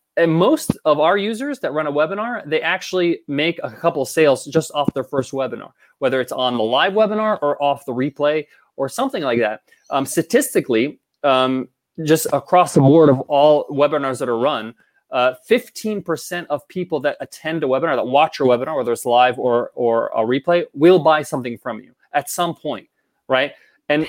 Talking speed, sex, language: 190 wpm, male, English